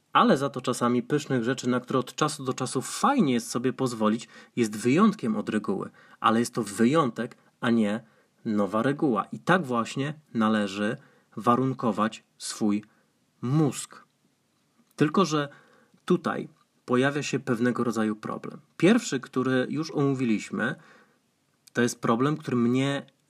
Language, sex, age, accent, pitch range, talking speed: Polish, male, 30-49, native, 120-145 Hz, 135 wpm